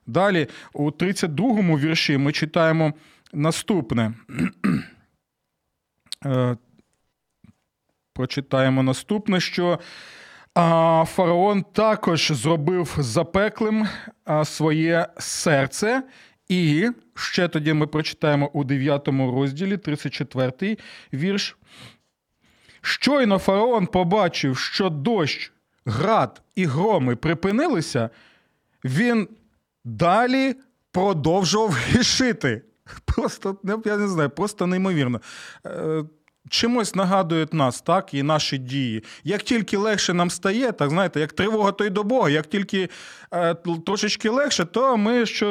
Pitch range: 145-200 Hz